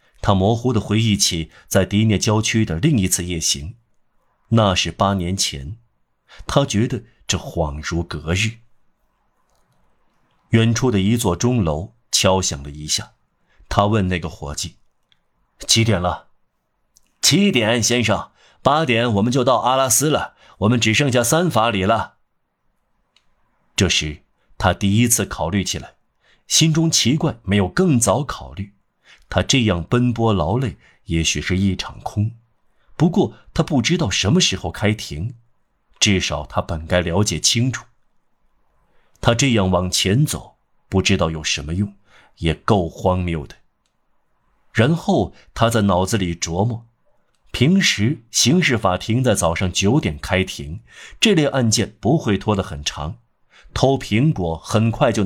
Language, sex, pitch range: Chinese, male, 90-120 Hz